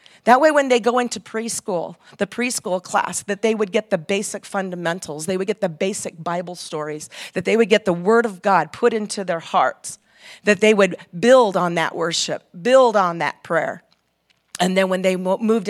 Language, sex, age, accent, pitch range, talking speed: English, female, 40-59, American, 180-225 Hz, 200 wpm